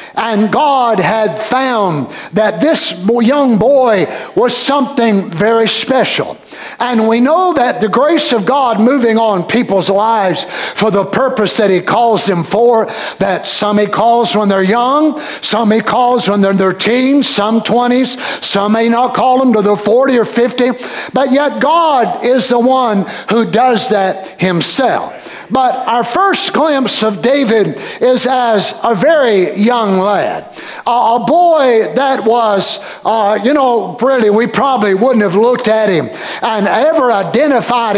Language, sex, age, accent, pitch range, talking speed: English, male, 60-79, American, 215-270 Hz, 155 wpm